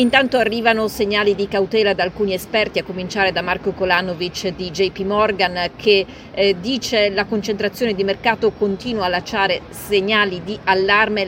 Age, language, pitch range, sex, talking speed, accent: 40-59, Italian, 190-215 Hz, female, 160 wpm, native